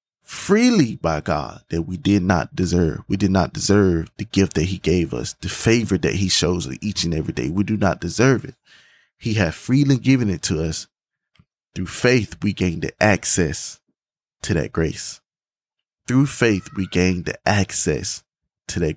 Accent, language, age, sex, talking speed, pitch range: American, English, 20-39, male, 180 wpm, 90-125 Hz